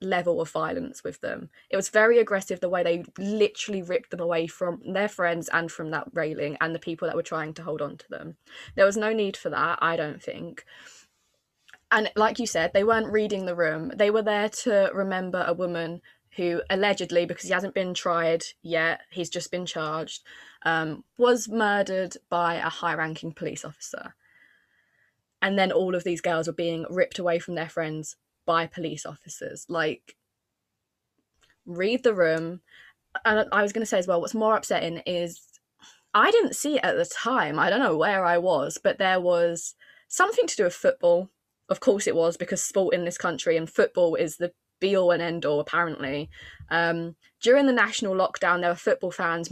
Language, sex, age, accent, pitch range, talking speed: English, female, 20-39, British, 170-215 Hz, 190 wpm